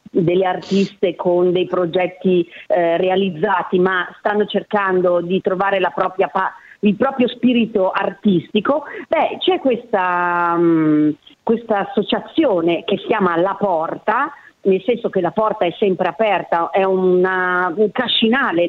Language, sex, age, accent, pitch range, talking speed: Italian, female, 40-59, native, 180-240 Hz, 130 wpm